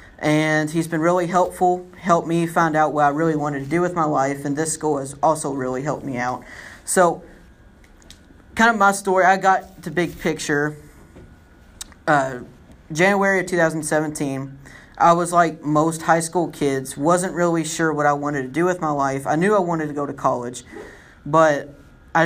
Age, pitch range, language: 30-49, 135-170 Hz, English